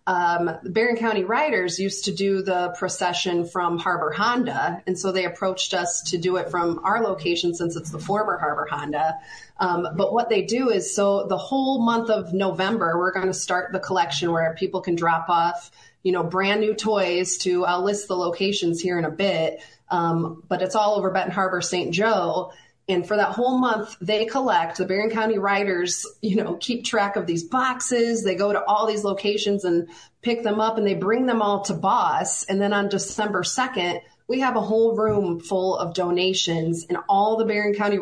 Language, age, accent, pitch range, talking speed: English, 30-49, American, 175-215 Hz, 200 wpm